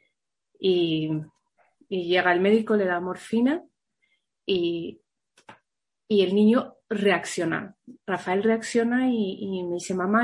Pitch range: 175-225 Hz